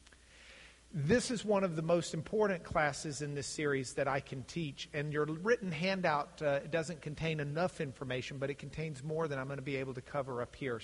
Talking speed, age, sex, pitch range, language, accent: 210 wpm, 50-69, male, 140-185 Hz, English, American